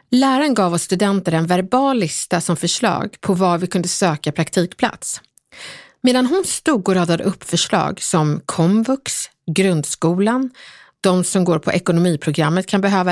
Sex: female